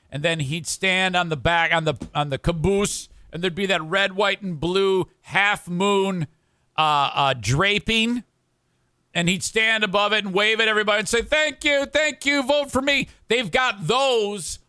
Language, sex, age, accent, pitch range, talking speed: English, male, 50-69, American, 155-215 Hz, 190 wpm